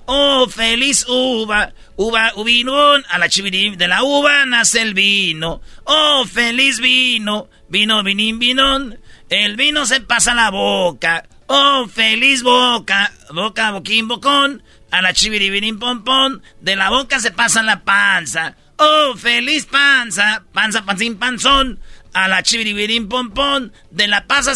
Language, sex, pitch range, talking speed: Spanish, male, 200-265 Hz, 140 wpm